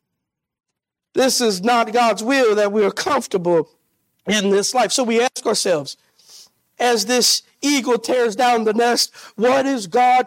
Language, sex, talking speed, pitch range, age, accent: English, male, 150 wpm, 245-325 Hz, 50-69, American